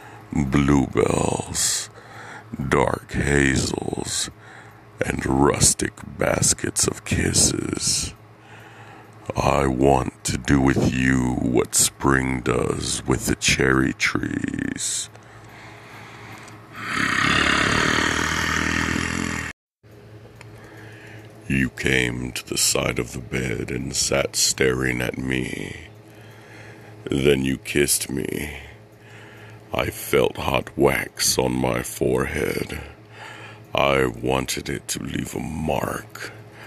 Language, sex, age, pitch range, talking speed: English, male, 50-69, 65-105 Hz, 85 wpm